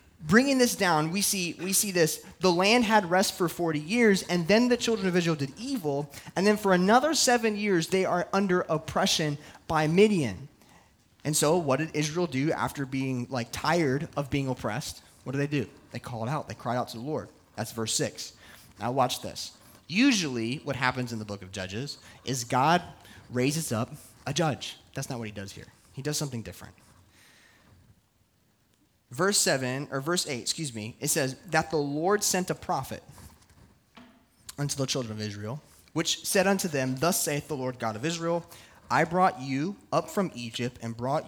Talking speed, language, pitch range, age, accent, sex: 190 wpm, English, 120-175 Hz, 20-39, American, male